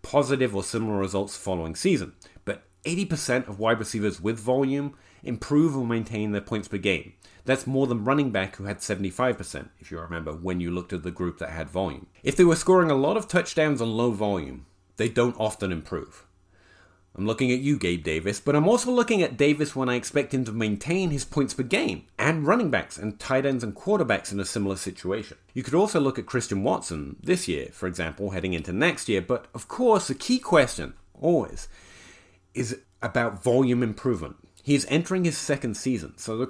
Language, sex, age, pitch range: English, male, 30-49, 95-135 Hz